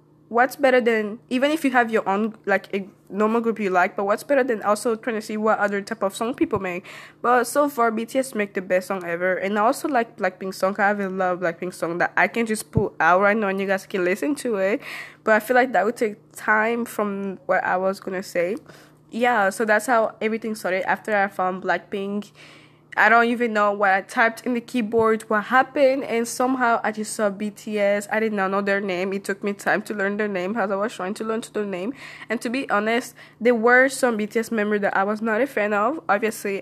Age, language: 20-39, English